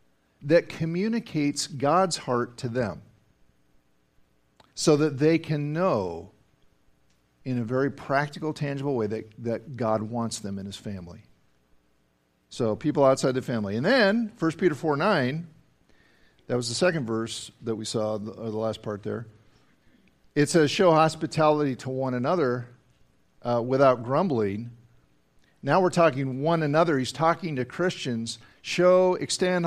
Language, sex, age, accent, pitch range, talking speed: English, male, 50-69, American, 110-165 Hz, 140 wpm